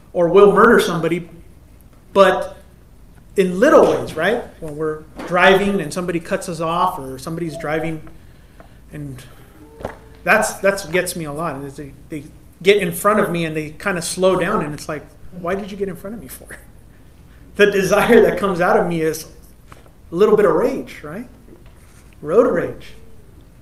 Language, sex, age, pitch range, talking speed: English, male, 30-49, 155-200 Hz, 175 wpm